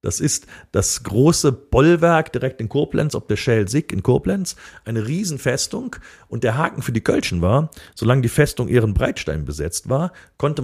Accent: German